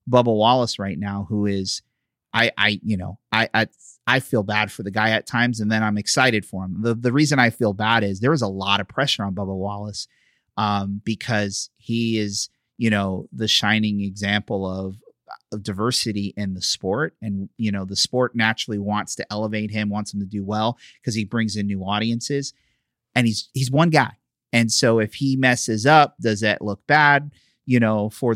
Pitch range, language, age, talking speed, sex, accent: 105-130 Hz, English, 30-49, 205 wpm, male, American